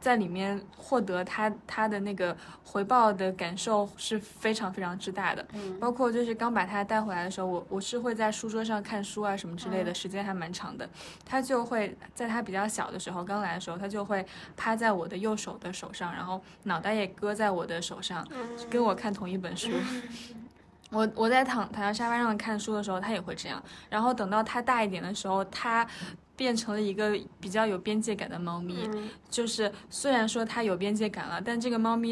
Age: 20-39